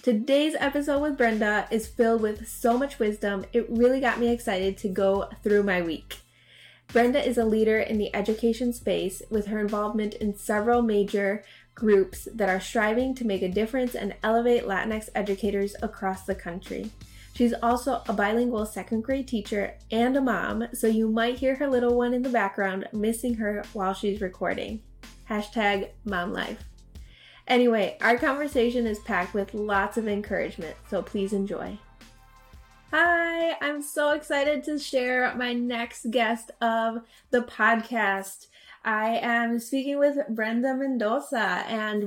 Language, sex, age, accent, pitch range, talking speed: English, female, 20-39, American, 205-245 Hz, 155 wpm